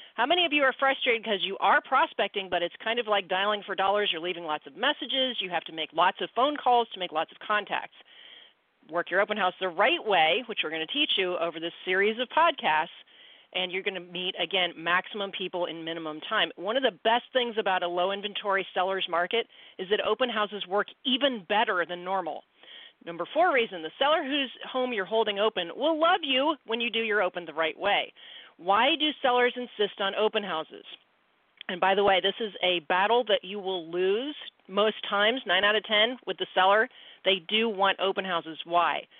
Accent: American